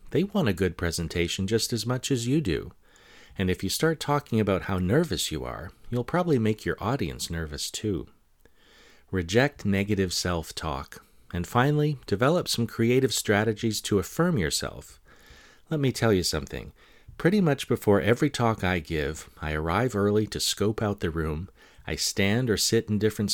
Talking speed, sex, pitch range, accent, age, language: 170 wpm, male, 85-125 Hz, American, 40-59, English